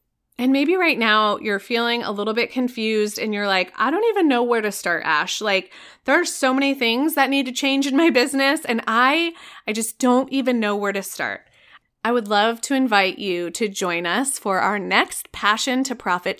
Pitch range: 210-270 Hz